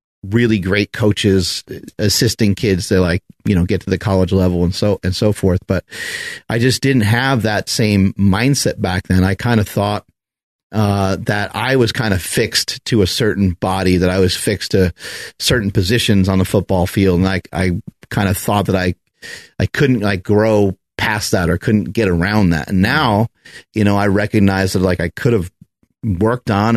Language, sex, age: English, male, 30-49